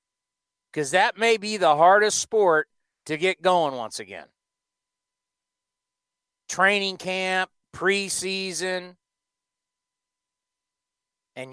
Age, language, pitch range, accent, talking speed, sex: 50-69, English, 175-215 Hz, American, 85 wpm, male